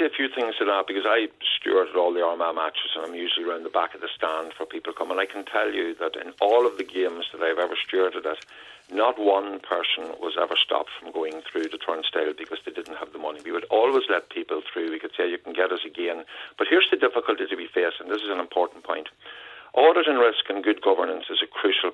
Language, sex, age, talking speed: English, male, 50-69, 250 wpm